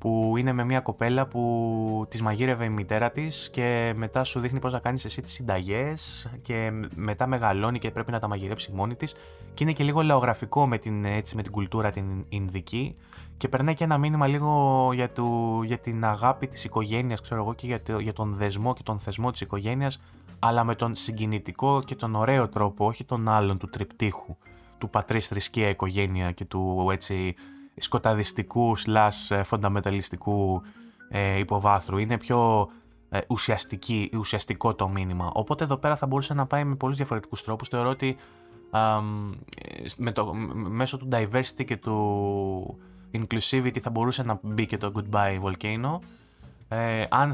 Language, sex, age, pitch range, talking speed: Greek, male, 20-39, 100-125 Hz, 165 wpm